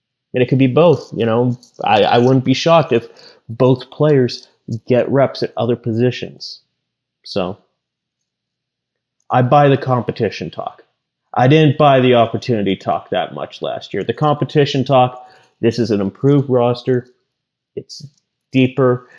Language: English